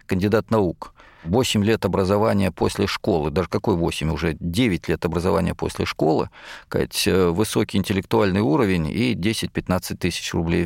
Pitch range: 95-140 Hz